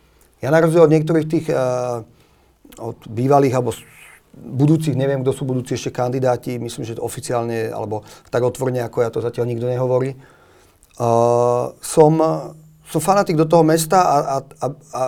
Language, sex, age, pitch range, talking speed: Slovak, male, 40-59, 115-155 Hz, 160 wpm